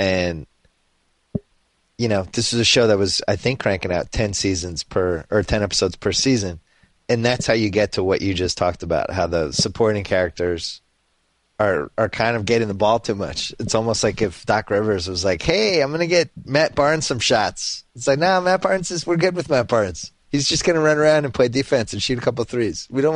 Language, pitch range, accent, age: English, 90-120 Hz, American, 30-49